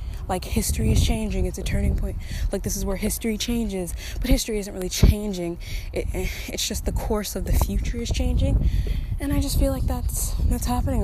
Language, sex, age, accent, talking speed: English, female, 20-39, American, 190 wpm